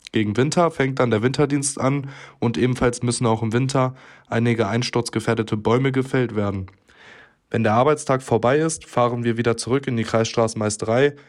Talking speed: 160 wpm